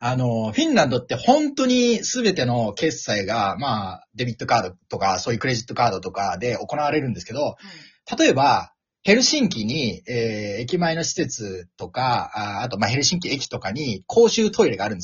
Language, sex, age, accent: Japanese, male, 30-49, native